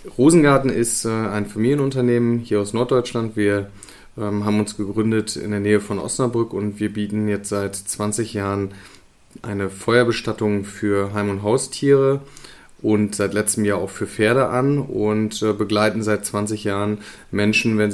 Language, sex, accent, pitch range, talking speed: German, male, German, 100-110 Hz, 145 wpm